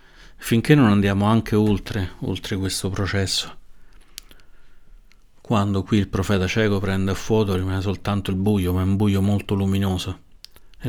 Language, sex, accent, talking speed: Italian, male, native, 150 wpm